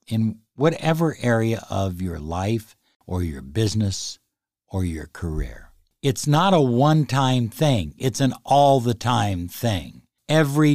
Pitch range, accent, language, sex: 95-135 Hz, American, English, male